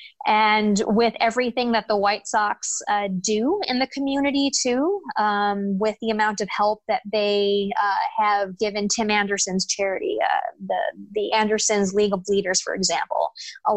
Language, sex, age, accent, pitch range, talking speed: English, female, 20-39, American, 200-235 Hz, 160 wpm